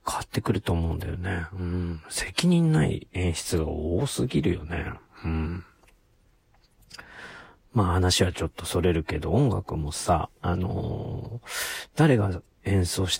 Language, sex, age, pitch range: Japanese, male, 40-59, 85-105 Hz